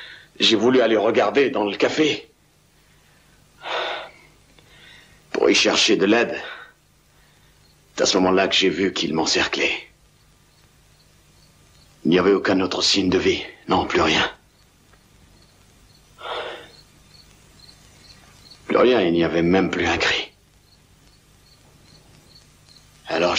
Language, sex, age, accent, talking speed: French, male, 60-79, French, 110 wpm